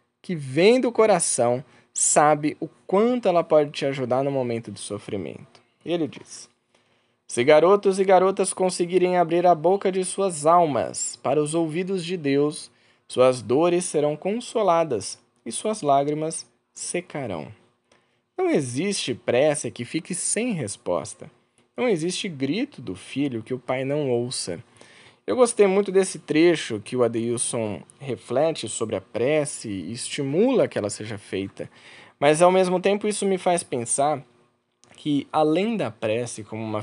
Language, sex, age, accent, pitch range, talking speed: Portuguese, male, 20-39, Brazilian, 120-180 Hz, 145 wpm